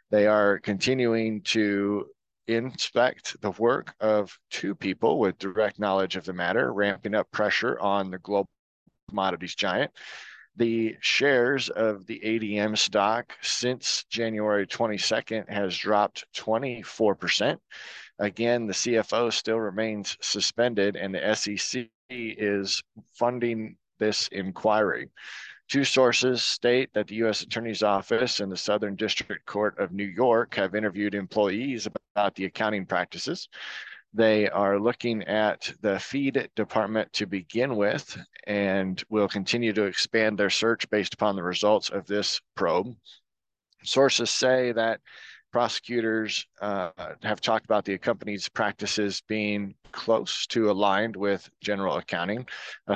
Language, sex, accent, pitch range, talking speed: English, male, American, 100-115 Hz, 130 wpm